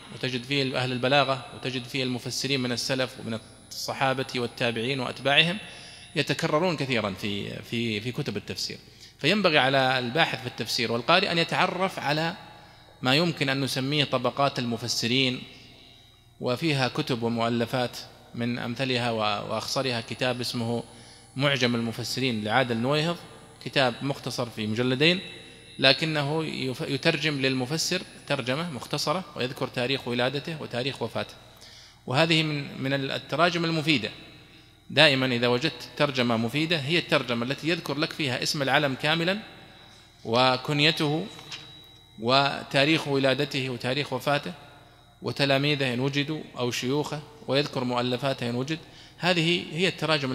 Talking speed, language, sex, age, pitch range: 110 wpm, Arabic, male, 20-39, 125-150 Hz